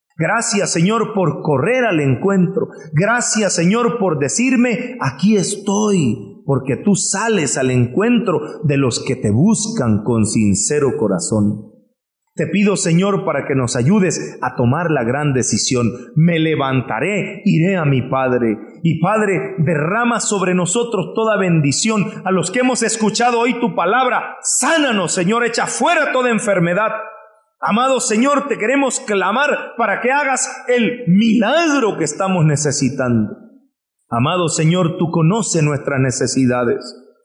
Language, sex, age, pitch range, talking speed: English, male, 40-59, 165-250 Hz, 135 wpm